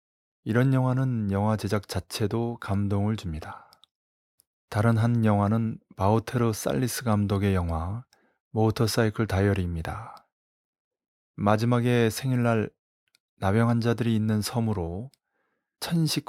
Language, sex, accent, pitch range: Korean, male, native, 100-120 Hz